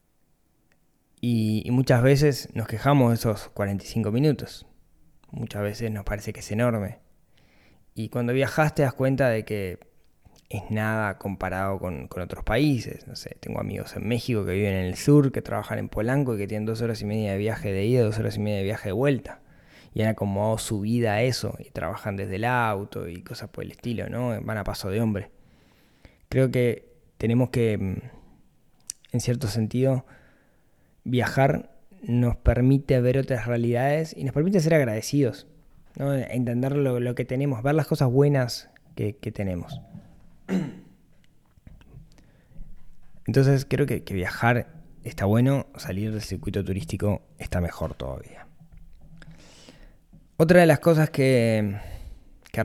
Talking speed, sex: 160 wpm, male